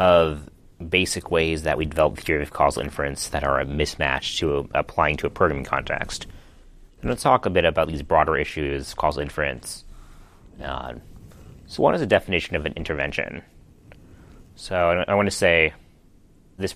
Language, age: English, 30-49